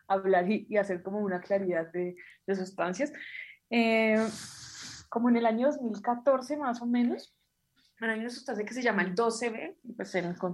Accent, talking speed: Colombian, 175 wpm